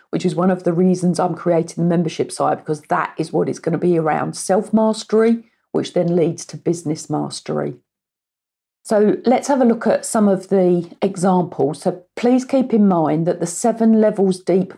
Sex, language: female, English